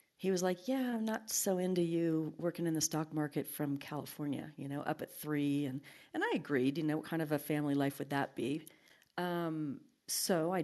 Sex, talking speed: female, 220 wpm